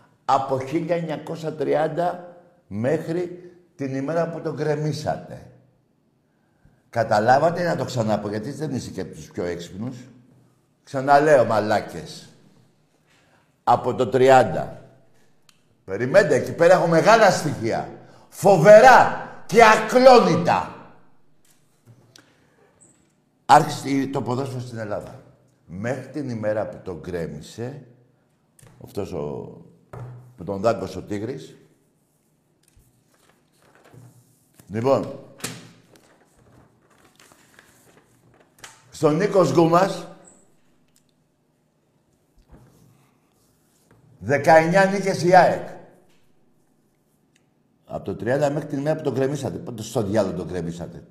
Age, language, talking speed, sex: 60-79, Greek, 85 wpm, male